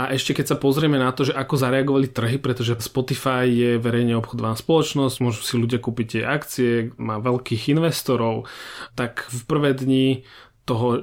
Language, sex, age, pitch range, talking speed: Slovak, male, 30-49, 120-140 Hz, 170 wpm